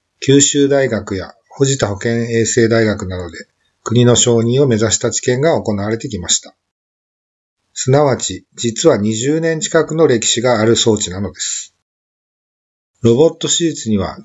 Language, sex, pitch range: Japanese, male, 105-135 Hz